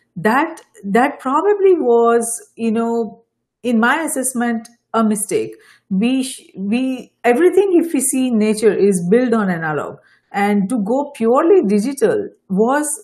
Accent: Indian